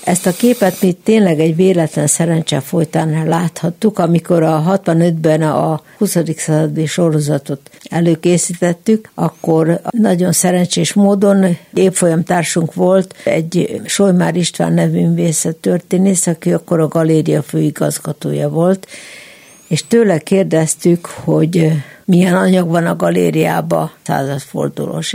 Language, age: Hungarian, 60-79